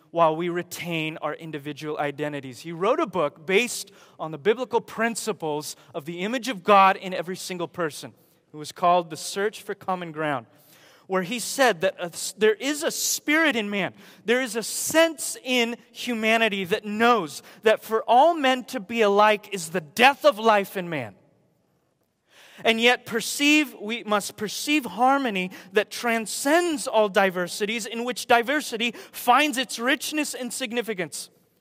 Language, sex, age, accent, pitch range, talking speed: English, male, 30-49, American, 160-230 Hz, 160 wpm